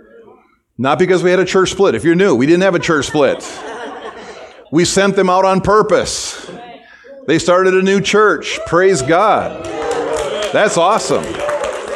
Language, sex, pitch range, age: English, male, 175-230 Hz, 40-59